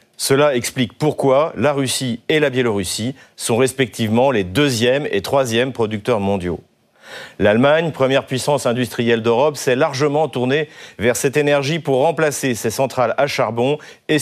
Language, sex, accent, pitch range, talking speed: French, male, French, 125-150 Hz, 145 wpm